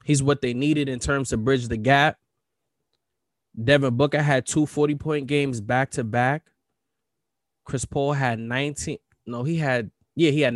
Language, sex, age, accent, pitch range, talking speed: English, male, 20-39, American, 120-155 Hz, 170 wpm